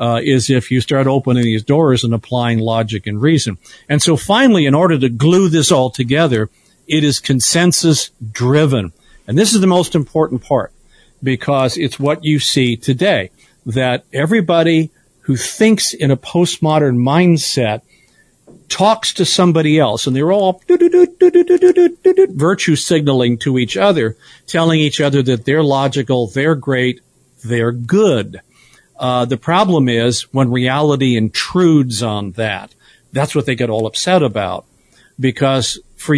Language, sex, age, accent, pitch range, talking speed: English, male, 50-69, American, 120-165 Hz, 145 wpm